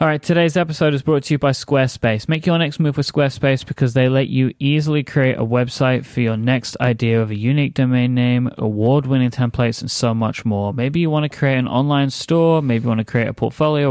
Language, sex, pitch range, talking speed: English, male, 115-145 Hz, 235 wpm